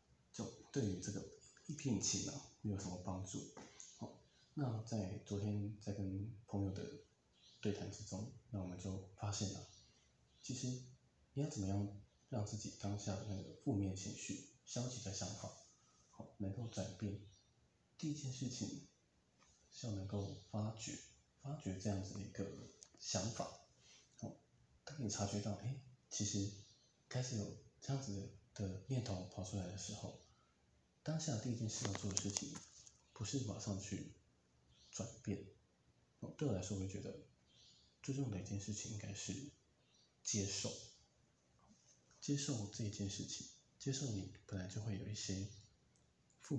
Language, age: Chinese, 20-39